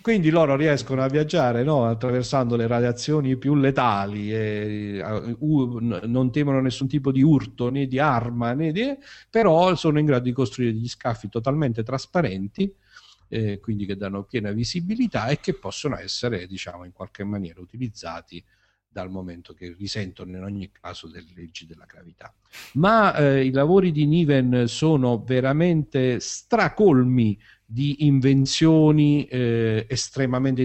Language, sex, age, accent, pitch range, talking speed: Italian, male, 50-69, native, 100-135 Hz, 145 wpm